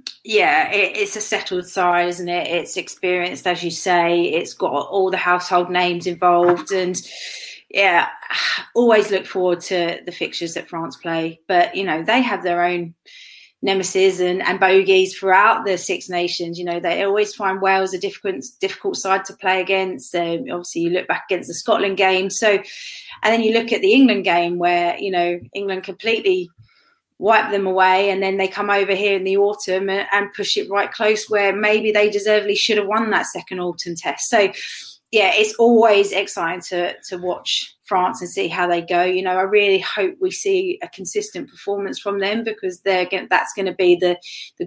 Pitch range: 175-200 Hz